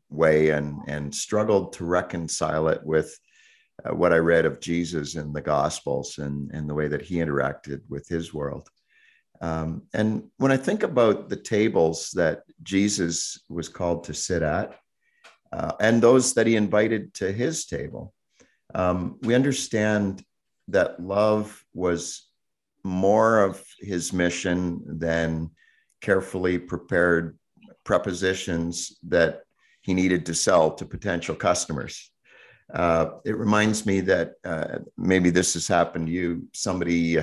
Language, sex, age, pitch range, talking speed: English, male, 50-69, 80-95 Hz, 140 wpm